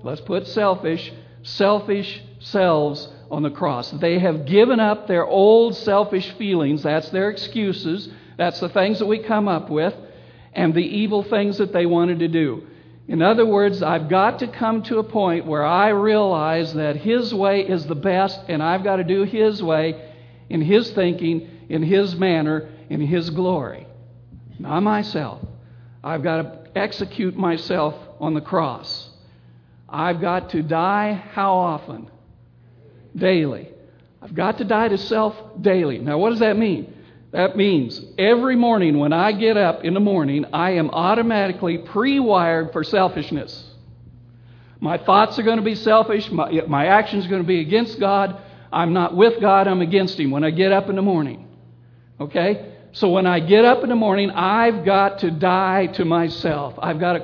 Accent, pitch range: American, 155-205 Hz